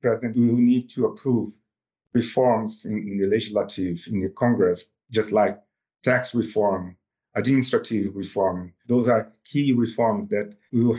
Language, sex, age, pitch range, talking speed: English, male, 50-69, 100-125 Hz, 140 wpm